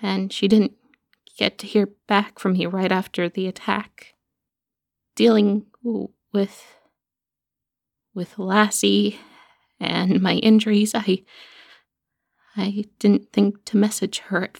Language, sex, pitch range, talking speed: English, female, 195-235 Hz, 120 wpm